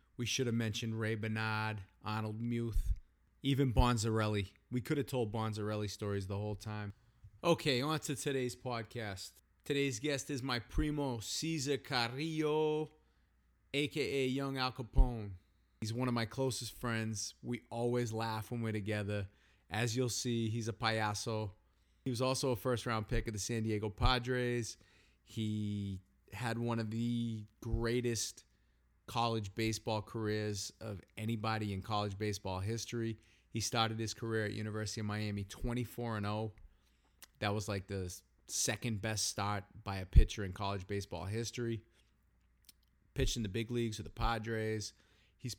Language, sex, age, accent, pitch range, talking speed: English, male, 30-49, American, 100-120 Hz, 145 wpm